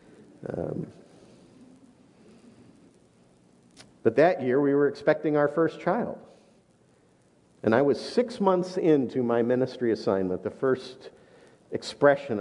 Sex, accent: male, American